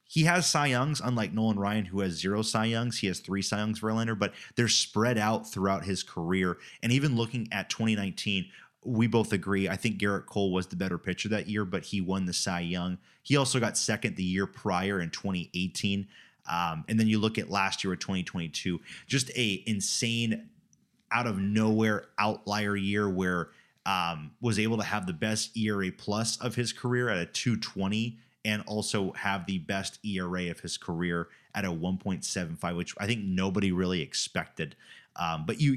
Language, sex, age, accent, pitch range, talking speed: English, male, 30-49, American, 95-110 Hz, 190 wpm